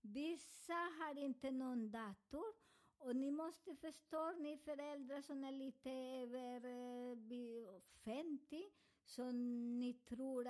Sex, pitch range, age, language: male, 240-305 Hz, 50-69, Swedish